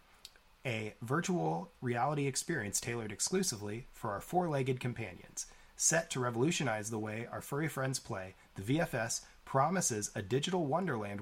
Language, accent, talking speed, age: English, American, 135 wpm, 30-49